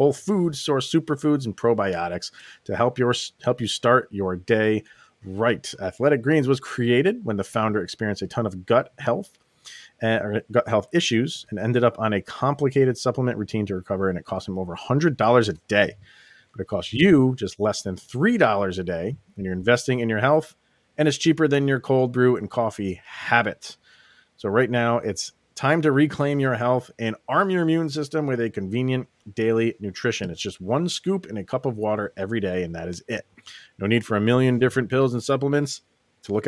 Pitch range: 105-135 Hz